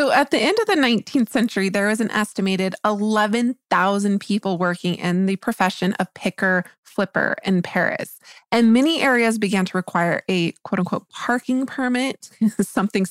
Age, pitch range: 20-39, 180-230 Hz